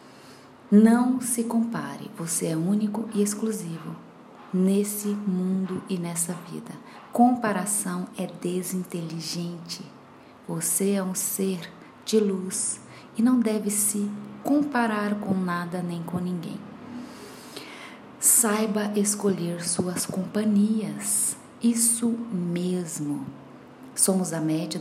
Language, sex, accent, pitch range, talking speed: Portuguese, female, Brazilian, 180-225 Hz, 100 wpm